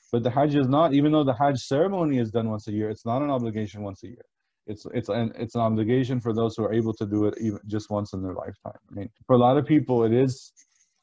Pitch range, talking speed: 105-125 Hz, 275 wpm